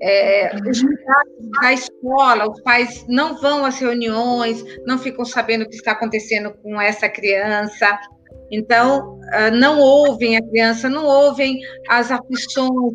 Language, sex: Portuguese, female